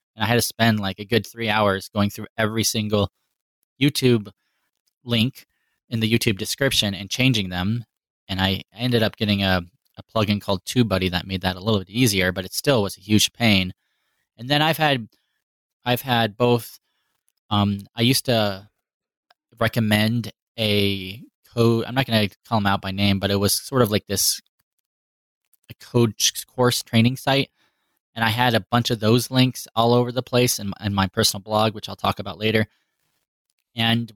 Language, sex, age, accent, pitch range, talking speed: English, male, 10-29, American, 100-125 Hz, 185 wpm